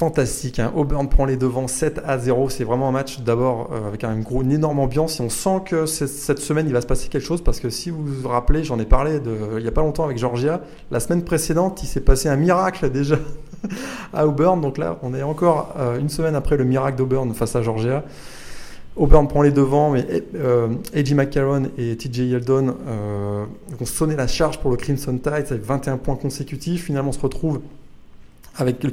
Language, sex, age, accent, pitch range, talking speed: French, male, 20-39, French, 125-155 Hz, 225 wpm